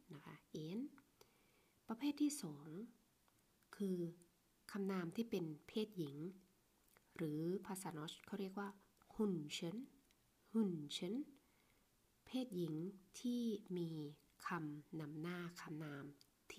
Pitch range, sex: 165-210 Hz, female